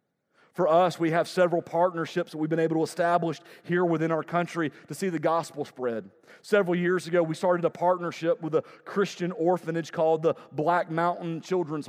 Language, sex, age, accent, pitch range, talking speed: English, male, 40-59, American, 160-195 Hz, 185 wpm